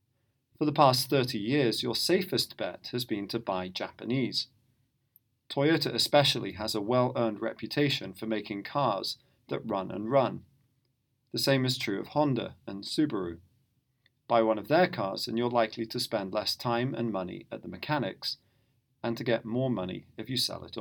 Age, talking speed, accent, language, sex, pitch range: 40-59, 175 wpm, British, English, male, 115-130 Hz